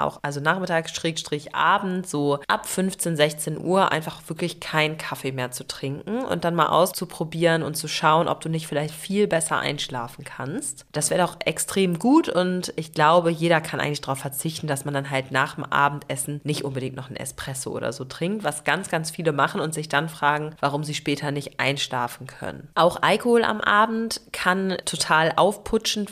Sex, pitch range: female, 145-180 Hz